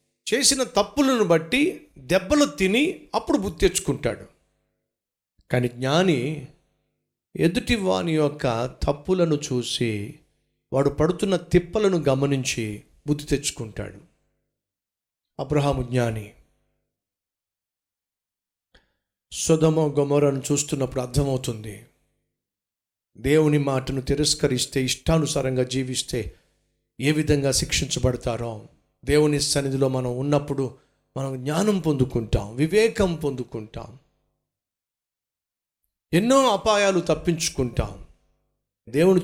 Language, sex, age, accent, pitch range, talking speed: Telugu, male, 50-69, native, 105-180 Hz, 75 wpm